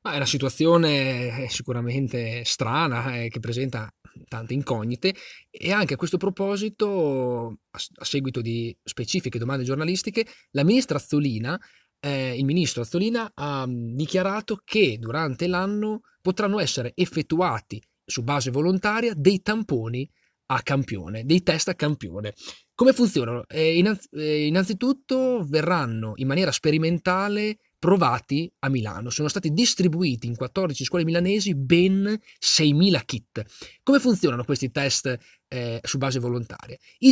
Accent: native